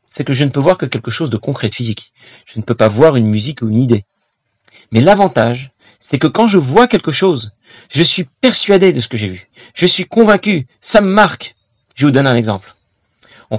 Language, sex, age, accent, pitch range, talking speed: French, male, 40-59, French, 110-150 Hz, 230 wpm